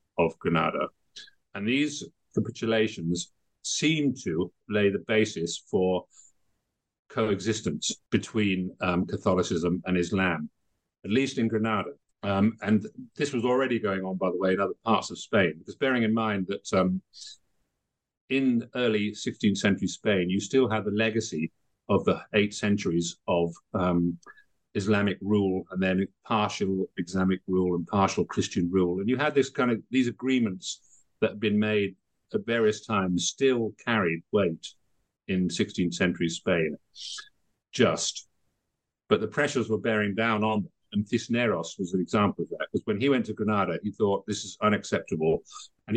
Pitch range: 95-120 Hz